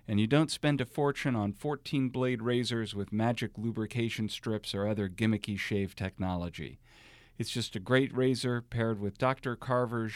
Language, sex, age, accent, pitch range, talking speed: English, male, 50-69, American, 105-130 Hz, 160 wpm